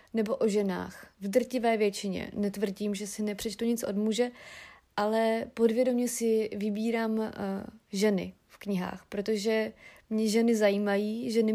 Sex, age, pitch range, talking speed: female, 30-49, 210-235 Hz, 135 wpm